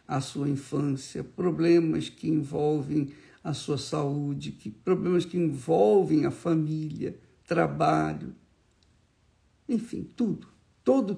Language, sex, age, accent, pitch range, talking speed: Portuguese, male, 60-79, Brazilian, 140-190 Hz, 95 wpm